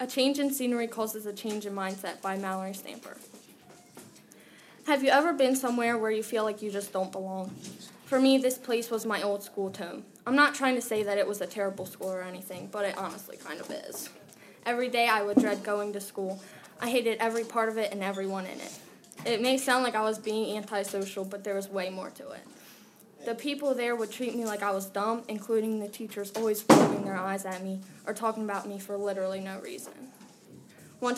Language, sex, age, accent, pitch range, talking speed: English, female, 10-29, American, 195-235 Hz, 220 wpm